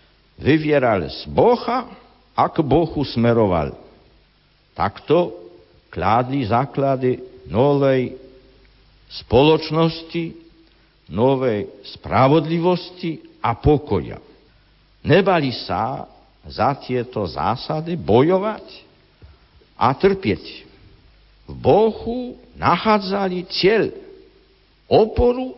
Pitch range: 125-195 Hz